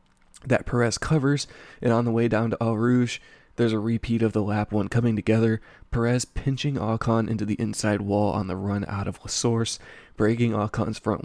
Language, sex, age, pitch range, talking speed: English, male, 20-39, 100-115 Hz, 195 wpm